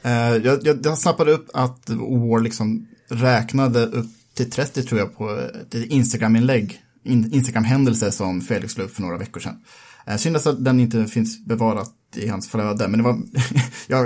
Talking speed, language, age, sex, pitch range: 175 wpm, Swedish, 30-49, male, 115-155 Hz